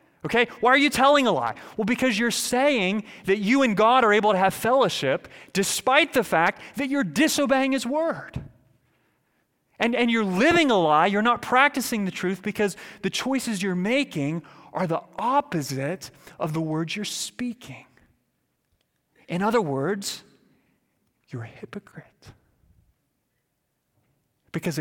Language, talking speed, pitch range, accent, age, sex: English, 145 wpm, 135-210 Hz, American, 30-49, male